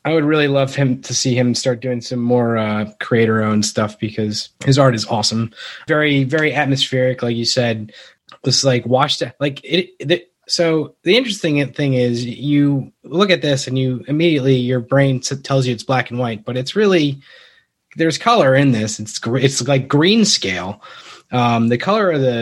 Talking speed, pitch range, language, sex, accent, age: 180 wpm, 115-145 Hz, English, male, American, 20-39